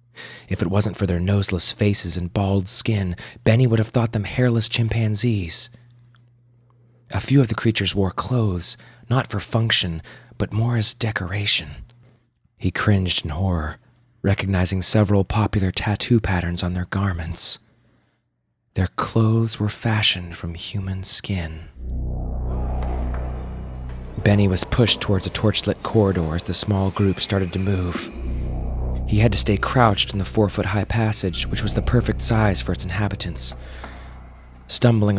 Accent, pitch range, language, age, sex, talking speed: American, 80-110 Hz, English, 30-49, male, 140 wpm